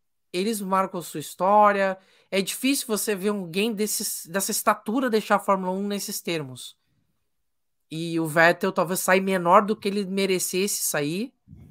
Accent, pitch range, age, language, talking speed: Brazilian, 170-210 Hz, 20-39, Portuguese, 150 wpm